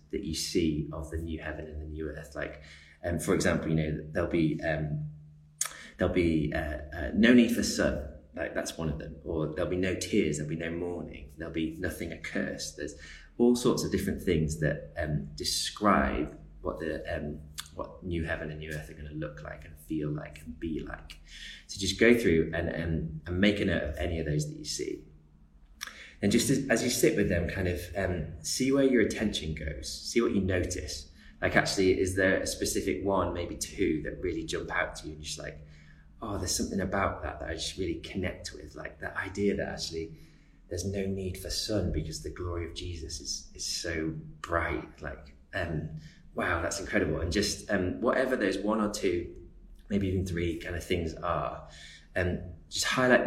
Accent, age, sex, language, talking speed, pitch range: British, 20-39, male, English, 205 wpm, 75-95 Hz